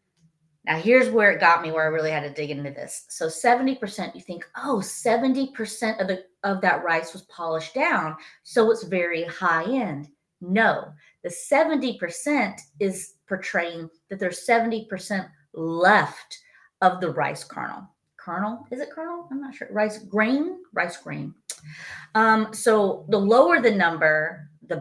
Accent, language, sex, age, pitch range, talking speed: American, English, female, 30-49, 165-230 Hz, 150 wpm